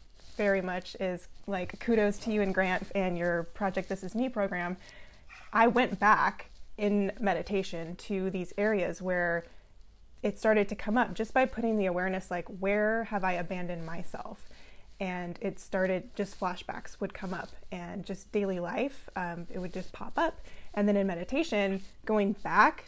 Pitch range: 185-215 Hz